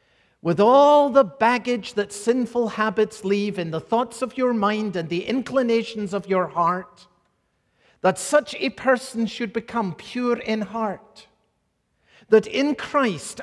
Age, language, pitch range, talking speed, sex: 50-69, English, 160-230 Hz, 145 wpm, male